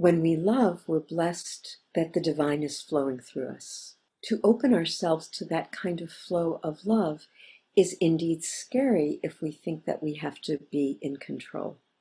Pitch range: 150-190 Hz